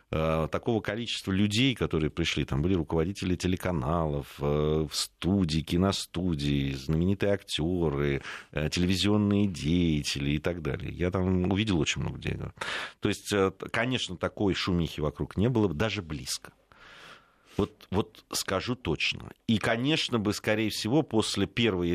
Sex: male